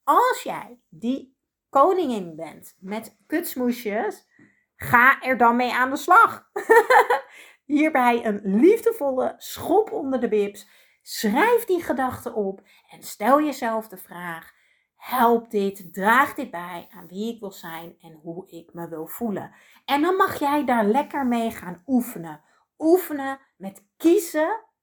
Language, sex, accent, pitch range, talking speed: Dutch, female, Dutch, 210-295 Hz, 140 wpm